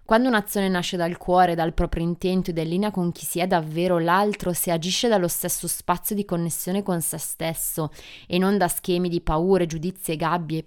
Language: Italian